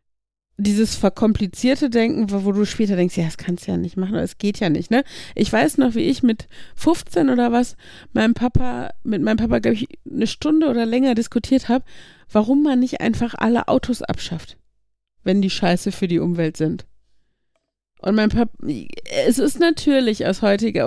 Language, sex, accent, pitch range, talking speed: German, female, German, 185-235 Hz, 185 wpm